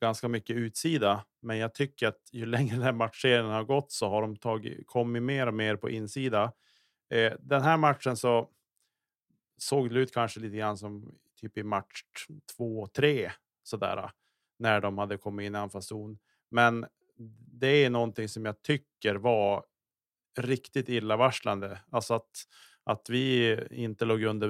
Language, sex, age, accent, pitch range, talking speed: Swedish, male, 30-49, Norwegian, 105-125 Hz, 150 wpm